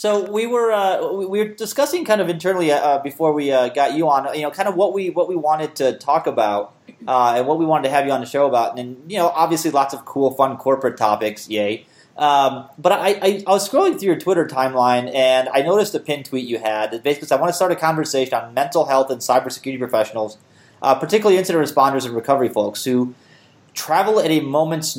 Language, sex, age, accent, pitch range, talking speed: English, male, 30-49, American, 120-160 Hz, 240 wpm